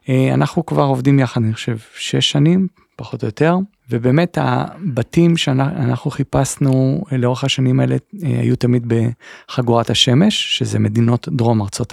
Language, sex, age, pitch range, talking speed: Hebrew, male, 40-59, 120-150 Hz, 130 wpm